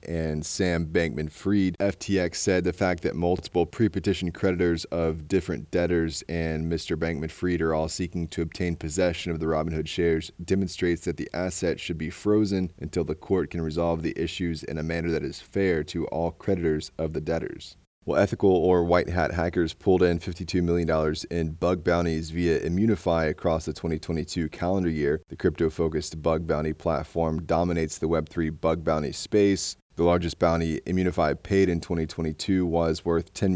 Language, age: English, 30-49